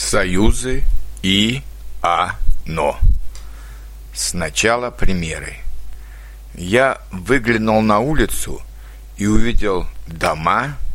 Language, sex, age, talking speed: Croatian, male, 60-79, 65 wpm